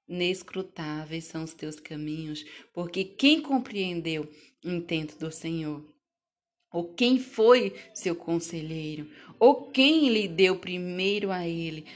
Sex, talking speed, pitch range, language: female, 120 wpm, 165-210 Hz, Portuguese